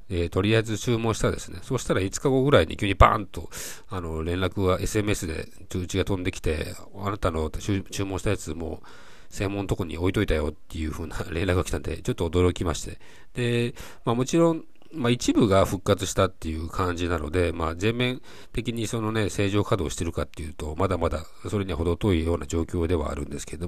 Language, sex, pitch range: Japanese, male, 85-110 Hz